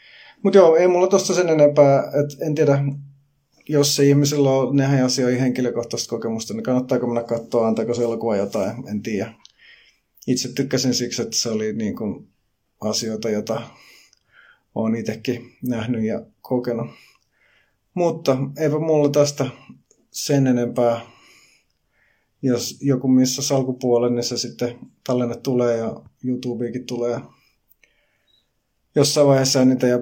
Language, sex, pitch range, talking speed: Finnish, male, 120-135 Hz, 130 wpm